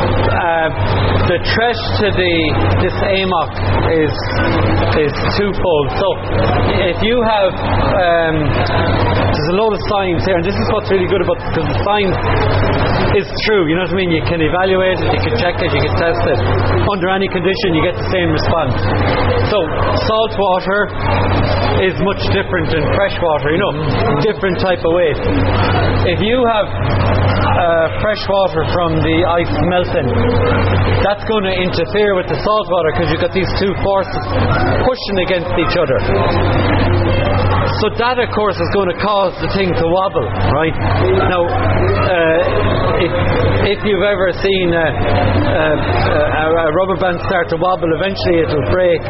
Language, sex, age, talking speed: English, male, 30-49, 160 wpm